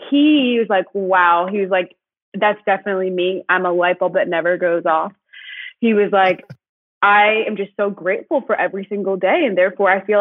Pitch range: 180-220 Hz